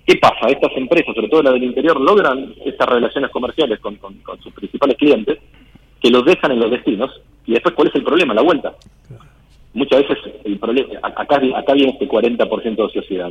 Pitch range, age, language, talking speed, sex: 100-130 Hz, 40-59, Spanish, 200 wpm, male